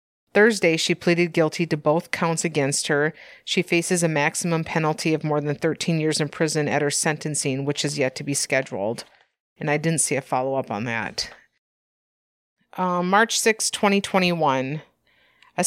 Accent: American